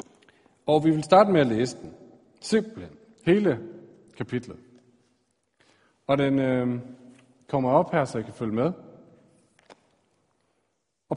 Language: Danish